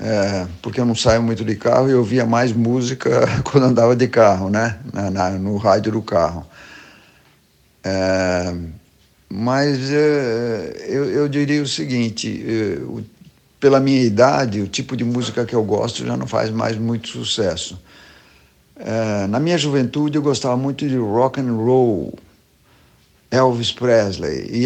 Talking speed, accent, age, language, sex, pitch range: 155 wpm, Brazilian, 60-79, Portuguese, male, 100-130 Hz